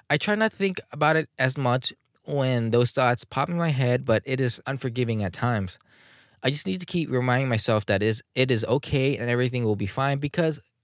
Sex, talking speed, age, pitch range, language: male, 220 wpm, 10-29, 100-145 Hz, English